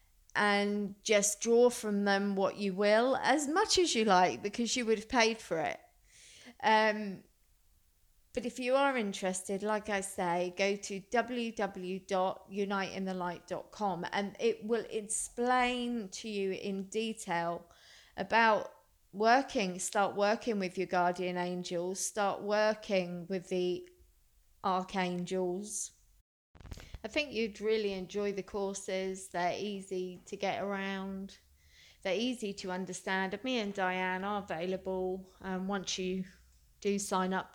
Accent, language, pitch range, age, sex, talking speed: British, English, 185-215 Hz, 30-49, female, 130 wpm